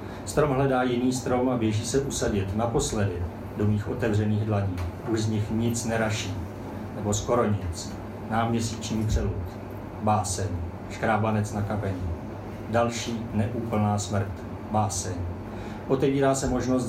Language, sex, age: Czech, male, 40-59